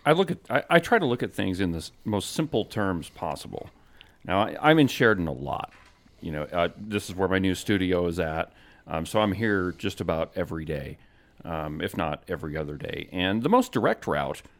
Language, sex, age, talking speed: English, male, 40-59, 220 wpm